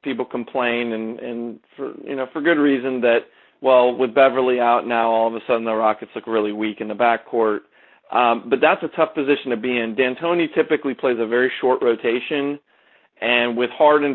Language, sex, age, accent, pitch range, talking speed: English, male, 40-59, American, 115-135 Hz, 200 wpm